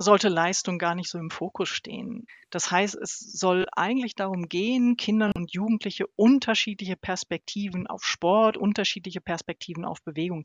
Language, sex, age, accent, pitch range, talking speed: German, female, 30-49, German, 190-235 Hz, 150 wpm